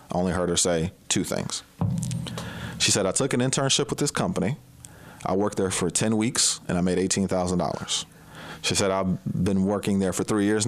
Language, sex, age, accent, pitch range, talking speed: English, male, 30-49, American, 90-105 Hz, 190 wpm